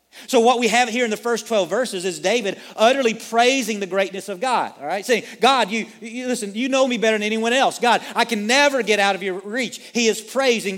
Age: 40-59